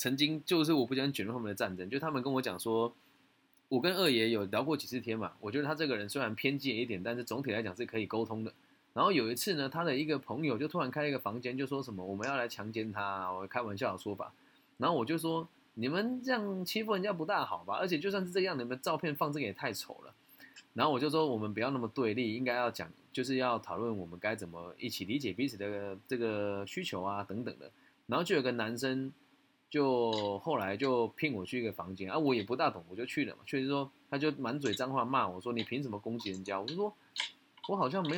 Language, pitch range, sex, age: Chinese, 105-150 Hz, male, 20-39